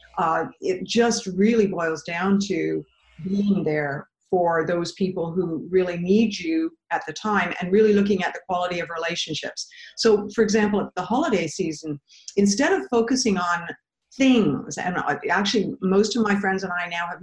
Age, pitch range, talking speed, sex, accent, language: 50-69, 170-205 Hz, 170 wpm, female, American, English